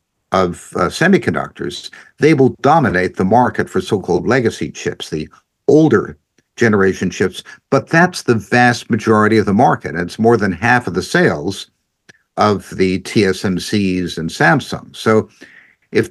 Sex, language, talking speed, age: male, English, 145 wpm, 60-79